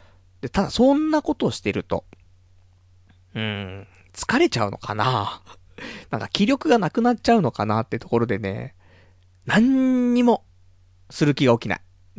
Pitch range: 90-155 Hz